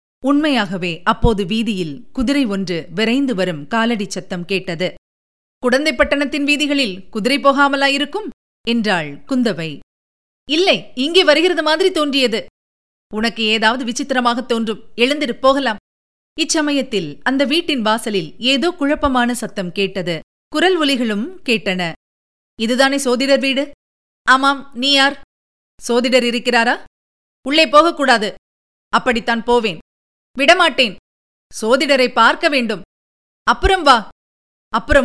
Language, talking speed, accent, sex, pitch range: Tamil, 95 wpm, native, female, 210-290 Hz